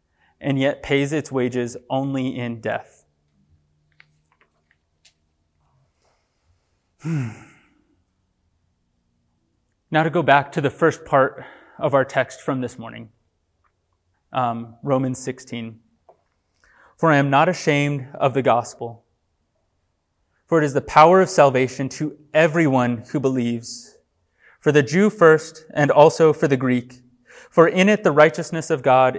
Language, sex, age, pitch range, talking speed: English, male, 20-39, 115-155 Hz, 125 wpm